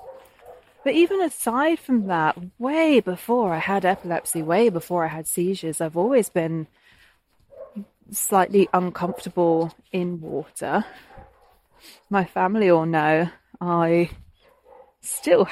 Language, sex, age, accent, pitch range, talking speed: English, female, 30-49, British, 170-210 Hz, 110 wpm